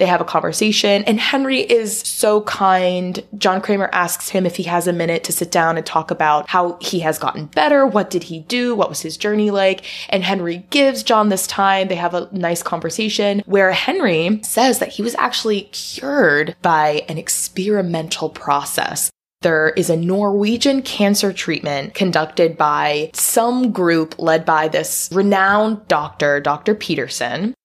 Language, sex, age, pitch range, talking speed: English, female, 20-39, 160-205 Hz, 170 wpm